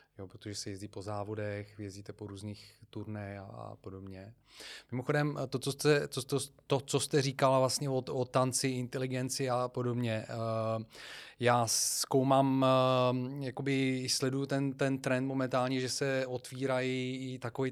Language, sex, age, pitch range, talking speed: Czech, male, 20-39, 115-130 Hz, 145 wpm